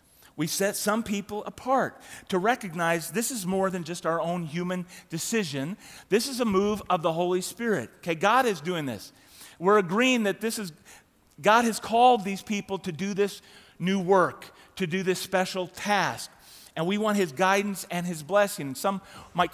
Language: English